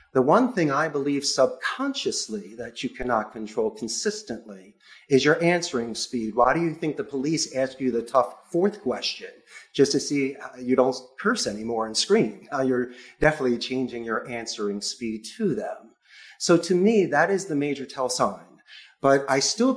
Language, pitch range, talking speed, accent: English, 125-165 Hz, 175 wpm, American